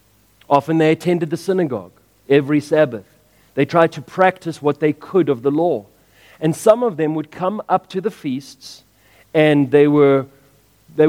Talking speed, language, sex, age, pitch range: 170 wpm, English, male, 40-59, 115-160 Hz